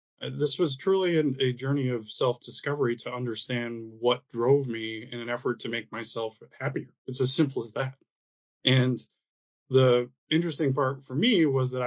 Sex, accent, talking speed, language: male, American, 160 wpm, English